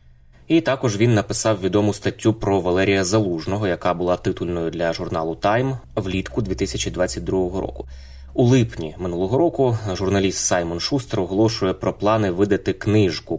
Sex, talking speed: male, 135 wpm